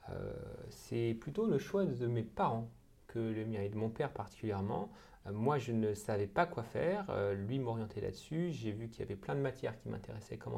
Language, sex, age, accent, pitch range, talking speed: French, male, 30-49, French, 110-135 Hz, 215 wpm